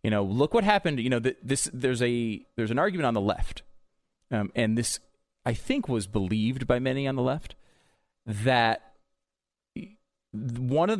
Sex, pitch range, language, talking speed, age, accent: male, 105-145 Hz, English, 175 wpm, 30-49, American